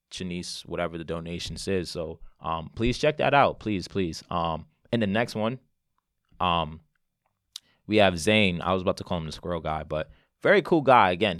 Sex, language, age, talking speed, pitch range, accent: male, English, 20-39, 190 wpm, 85-105 Hz, American